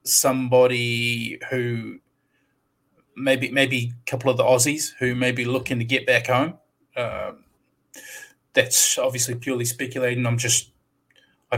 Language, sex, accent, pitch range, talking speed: English, male, Australian, 120-130 Hz, 130 wpm